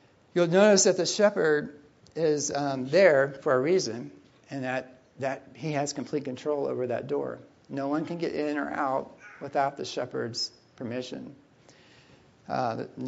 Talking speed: 150 wpm